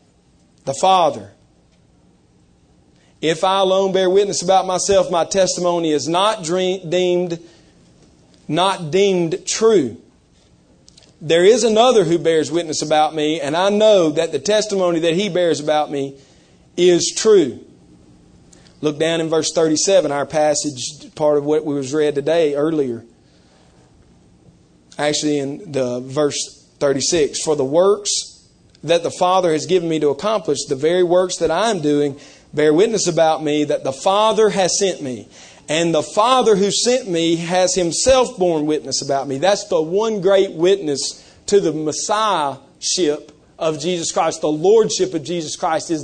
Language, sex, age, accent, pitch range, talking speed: English, male, 40-59, American, 150-195 Hz, 155 wpm